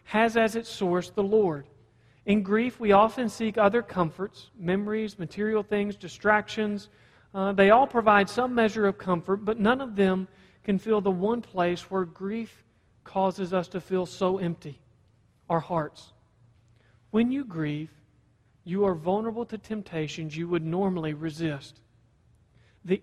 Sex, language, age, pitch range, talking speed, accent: male, English, 40-59, 150-210 Hz, 150 wpm, American